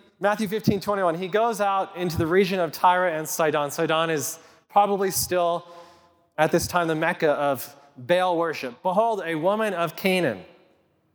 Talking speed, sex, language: 160 wpm, male, English